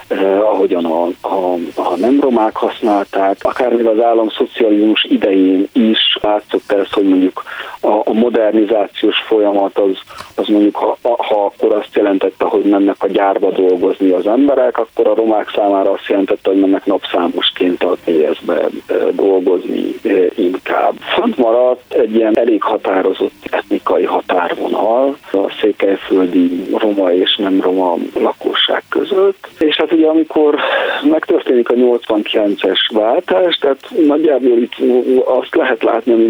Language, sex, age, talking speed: Hungarian, male, 50-69, 130 wpm